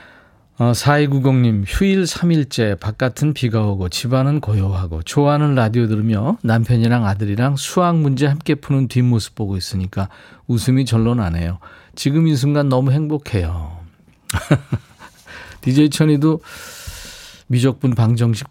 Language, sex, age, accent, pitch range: Korean, male, 40-59, native, 105-145 Hz